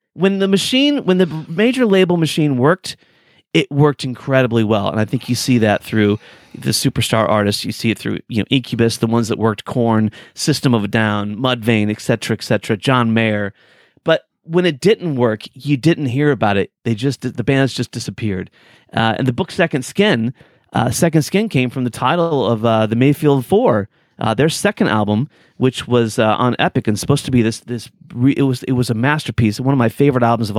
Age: 30-49